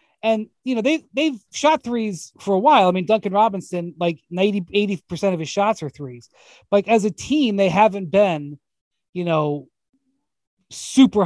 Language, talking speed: English, 170 wpm